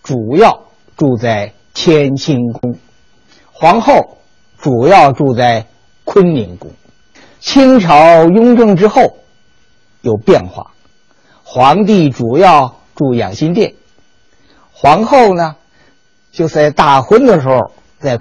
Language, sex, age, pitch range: Chinese, male, 50-69, 130-195 Hz